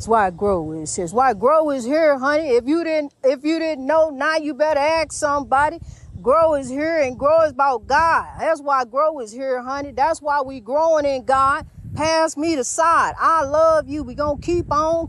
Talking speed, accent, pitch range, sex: 225 wpm, American, 275-320 Hz, female